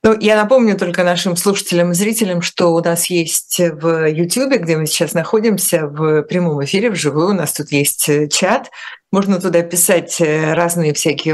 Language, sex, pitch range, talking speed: Russian, female, 155-195 Hz, 170 wpm